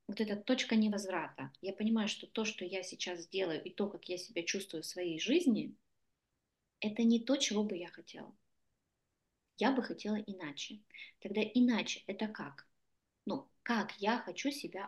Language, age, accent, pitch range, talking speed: Russian, 20-39, native, 195-230 Hz, 165 wpm